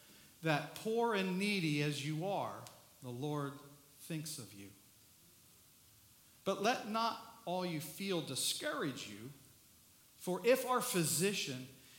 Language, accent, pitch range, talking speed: English, American, 130-175 Hz, 120 wpm